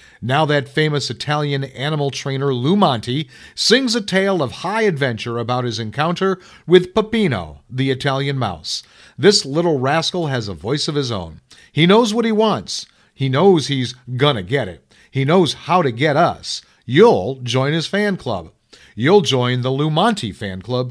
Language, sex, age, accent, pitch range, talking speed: English, male, 40-59, American, 125-175 Hz, 170 wpm